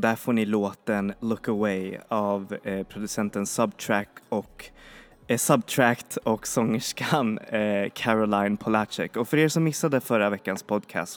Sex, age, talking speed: male, 20-39, 135 wpm